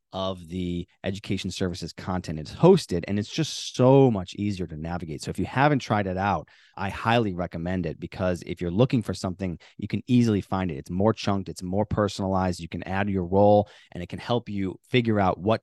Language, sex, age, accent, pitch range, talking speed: English, male, 30-49, American, 95-125 Hz, 215 wpm